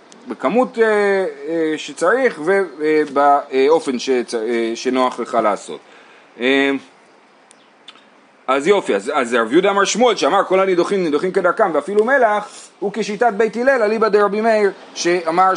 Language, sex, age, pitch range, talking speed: Hebrew, male, 30-49, 160-235 Hz, 135 wpm